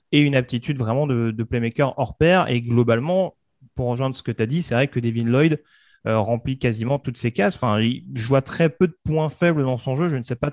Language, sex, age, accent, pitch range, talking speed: French, male, 30-49, French, 115-145 Hz, 245 wpm